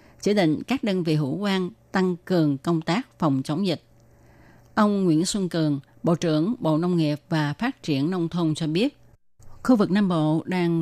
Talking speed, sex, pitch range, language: 195 wpm, female, 155-195 Hz, Vietnamese